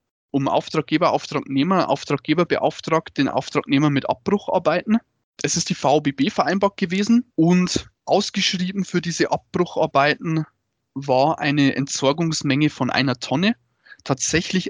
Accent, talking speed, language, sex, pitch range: German, 110 wpm, German, male, 140-170 Hz